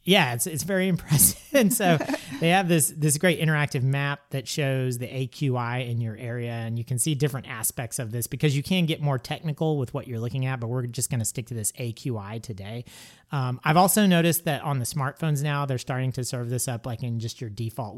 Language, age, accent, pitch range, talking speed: English, 30-49, American, 120-150 Hz, 235 wpm